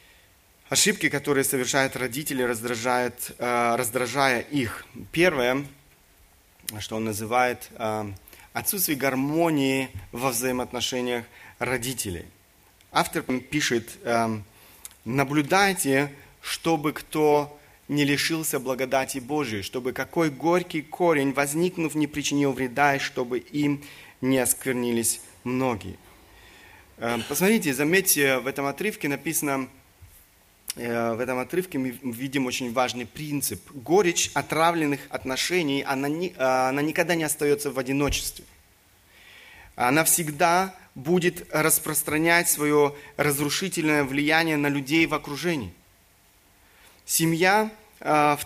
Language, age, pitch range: Russian, 30-49, 125-150 Hz